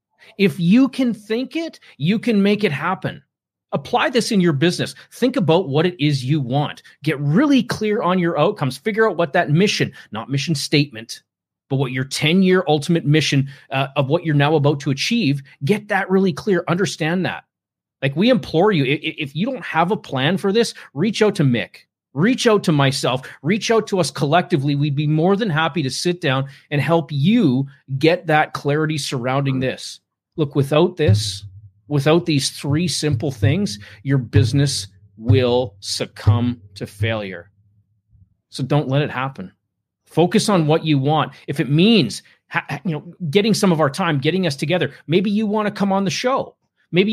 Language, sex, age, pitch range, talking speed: English, male, 30-49, 140-185 Hz, 180 wpm